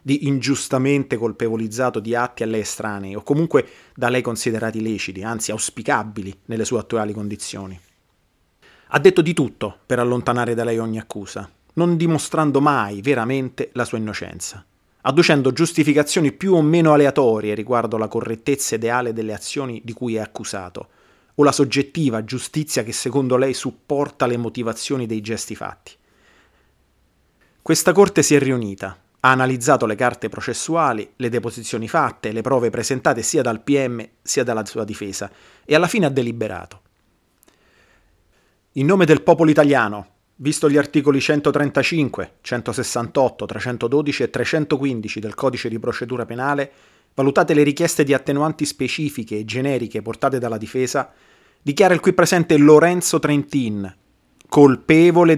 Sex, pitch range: male, 110-145 Hz